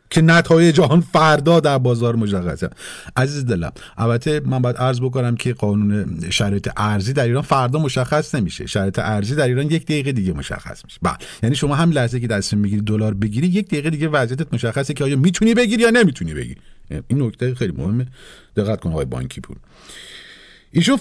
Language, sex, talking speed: Persian, male, 180 wpm